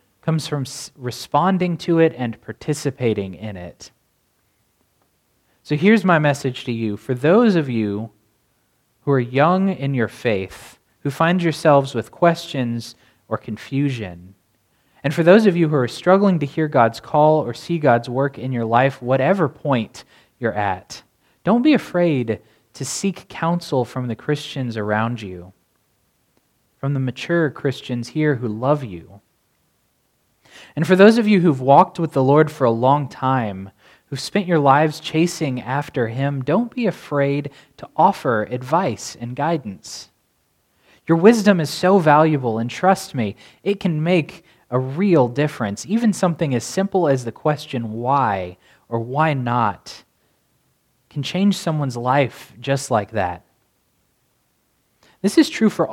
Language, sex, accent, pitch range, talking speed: English, male, American, 115-165 Hz, 150 wpm